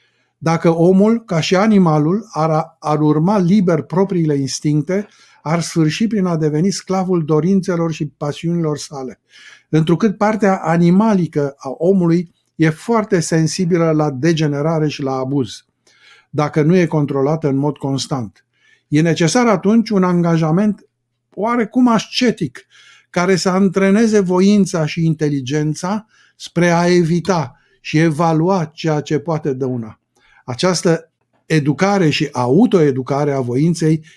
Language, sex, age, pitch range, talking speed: Romanian, male, 50-69, 145-190 Hz, 125 wpm